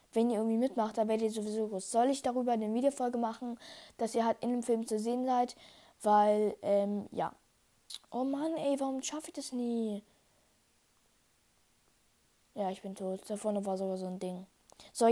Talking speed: 185 wpm